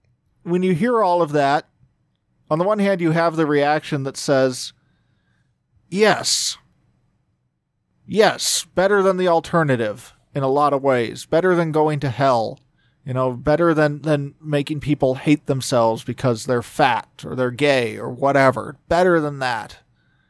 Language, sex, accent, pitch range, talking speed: English, male, American, 125-165 Hz, 155 wpm